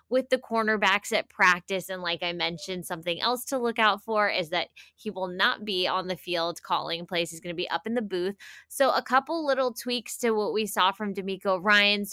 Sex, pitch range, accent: female, 175-210 Hz, American